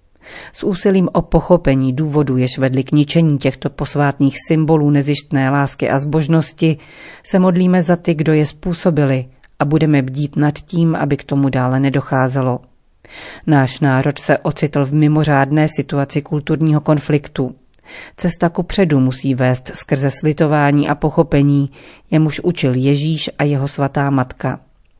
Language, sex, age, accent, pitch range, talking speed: Czech, female, 40-59, native, 135-160 Hz, 140 wpm